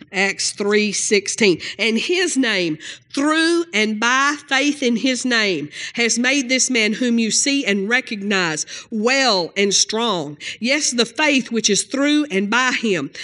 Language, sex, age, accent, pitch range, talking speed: English, female, 50-69, American, 195-260 Hz, 155 wpm